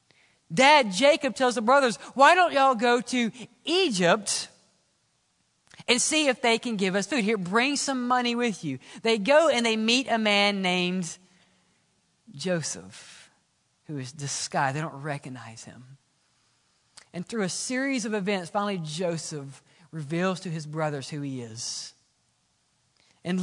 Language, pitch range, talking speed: English, 135-215 Hz, 145 wpm